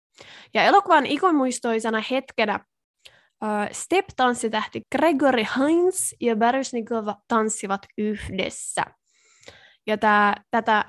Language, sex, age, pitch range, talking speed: Finnish, female, 20-39, 210-245 Hz, 90 wpm